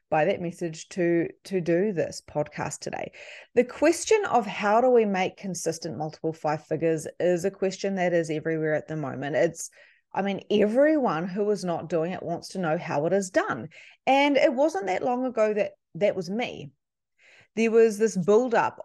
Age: 30-49